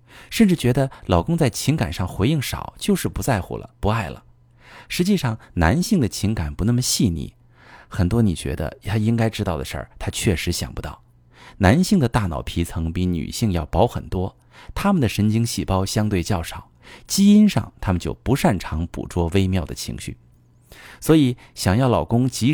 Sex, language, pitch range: male, Chinese, 90-125 Hz